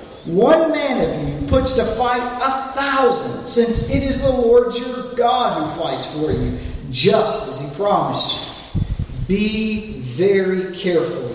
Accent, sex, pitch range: American, male, 155-215 Hz